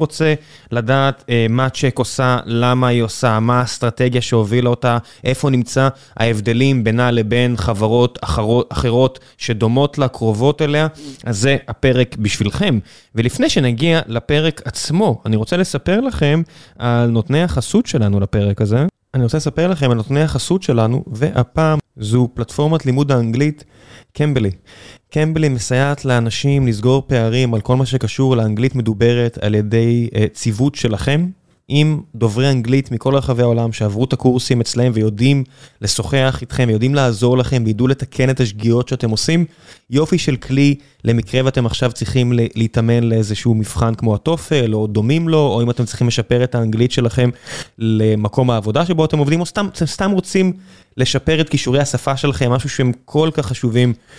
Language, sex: Hebrew, male